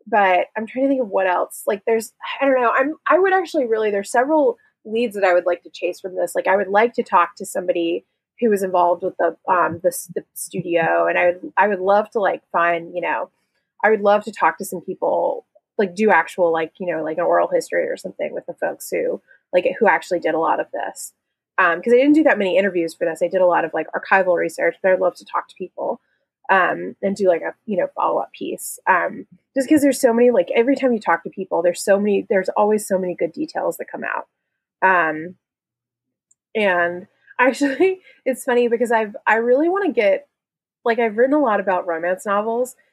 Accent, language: American, English